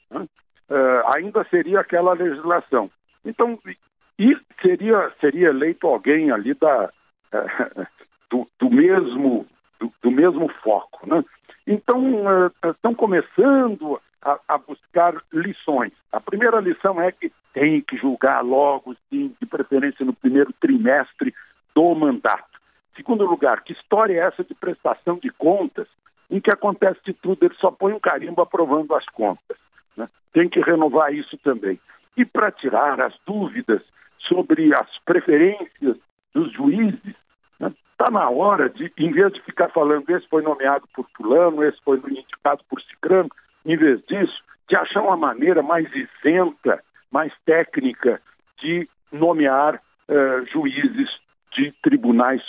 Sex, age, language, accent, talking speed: male, 60-79, Portuguese, Brazilian, 135 wpm